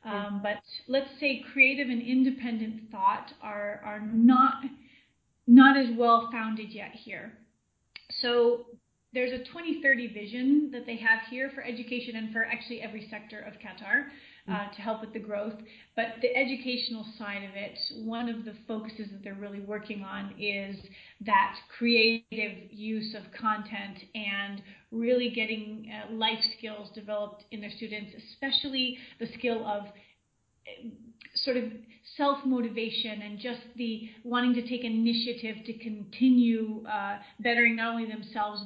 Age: 30-49